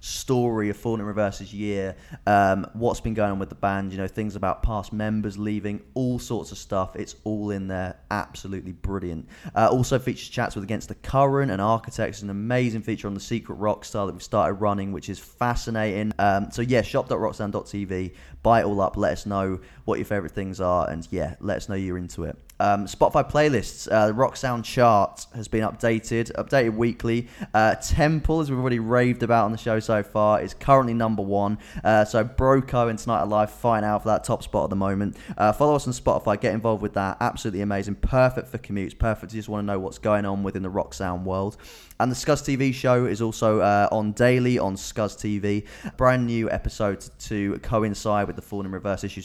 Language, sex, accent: English, male, British